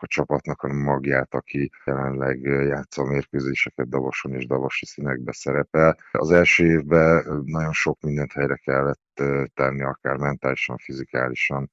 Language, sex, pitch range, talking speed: Hungarian, male, 70-75 Hz, 135 wpm